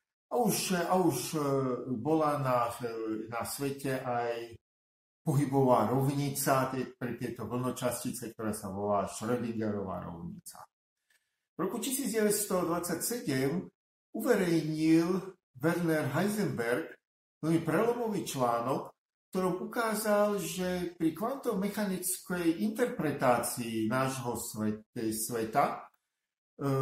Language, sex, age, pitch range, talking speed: Slovak, male, 50-69, 125-190 Hz, 85 wpm